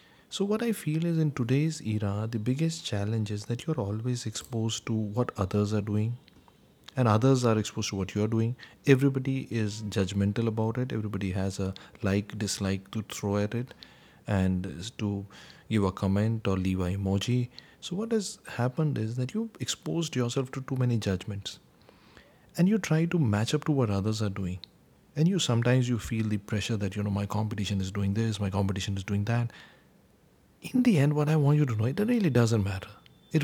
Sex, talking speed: male, 200 wpm